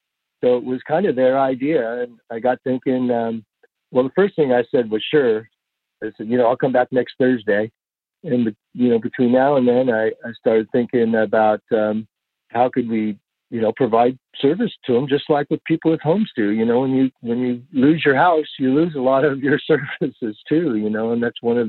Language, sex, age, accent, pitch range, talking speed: English, male, 50-69, American, 110-135 Hz, 225 wpm